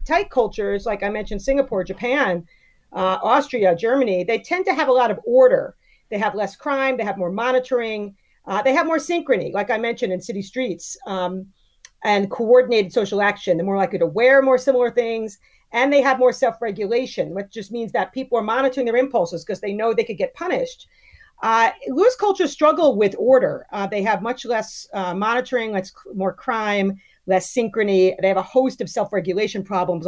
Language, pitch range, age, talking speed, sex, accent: English, 195-250 Hz, 40-59, 190 wpm, female, American